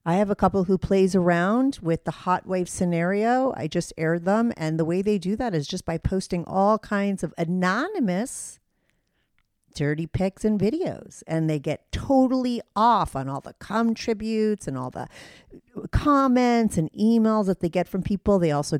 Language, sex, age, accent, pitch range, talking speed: English, female, 40-59, American, 155-215 Hz, 180 wpm